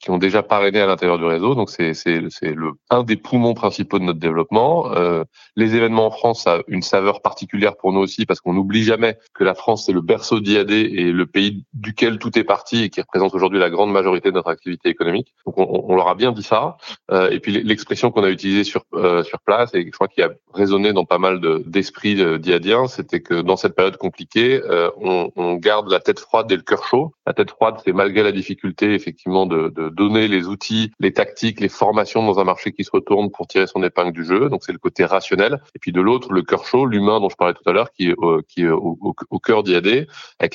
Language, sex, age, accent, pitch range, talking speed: French, male, 30-49, French, 90-105 Hz, 250 wpm